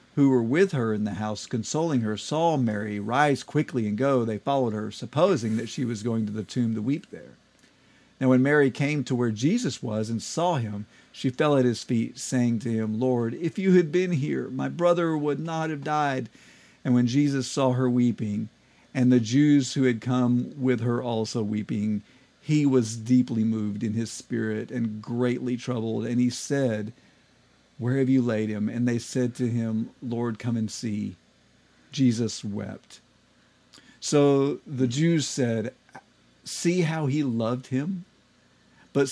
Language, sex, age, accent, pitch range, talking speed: English, male, 50-69, American, 115-145 Hz, 175 wpm